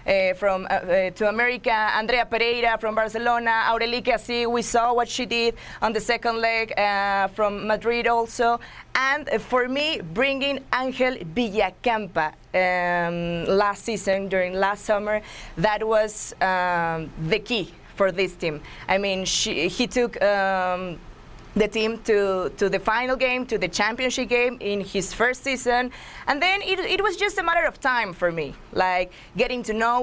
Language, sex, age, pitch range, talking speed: English, female, 20-39, 195-245 Hz, 160 wpm